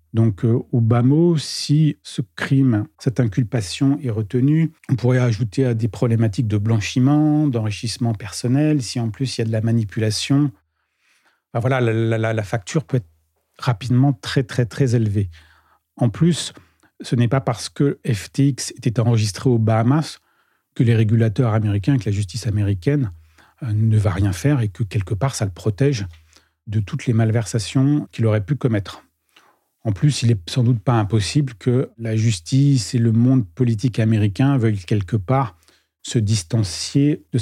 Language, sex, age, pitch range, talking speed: French, male, 40-59, 110-130 Hz, 165 wpm